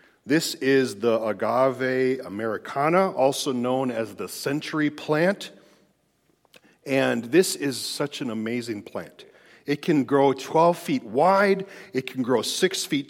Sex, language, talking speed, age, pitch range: male, English, 135 wpm, 40-59, 130-170 Hz